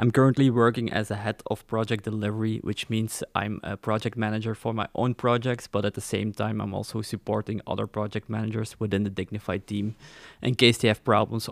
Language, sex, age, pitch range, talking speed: English, male, 20-39, 105-120 Hz, 205 wpm